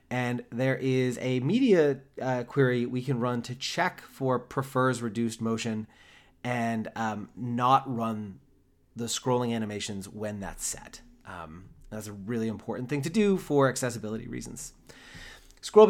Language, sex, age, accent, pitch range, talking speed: English, male, 30-49, American, 115-145 Hz, 145 wpm